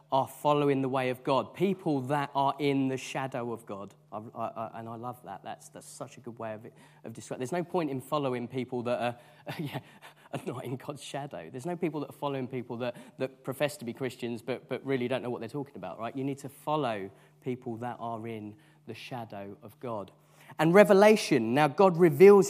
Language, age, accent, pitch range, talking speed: English, 30-49, British, 125-155 Hz, 225 wpm